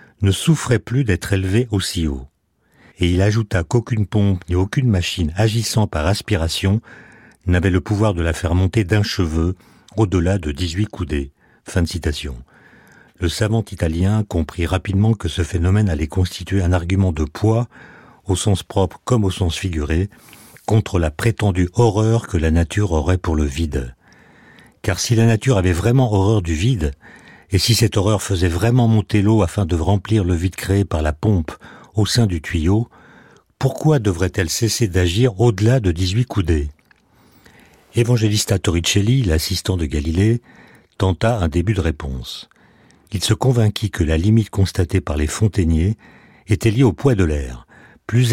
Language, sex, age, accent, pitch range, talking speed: French, male, 50-69, French, 85-110 Hz, 165 wpm